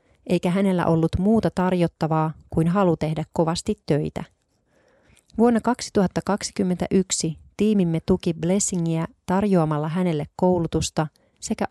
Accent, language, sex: native, Finnish, female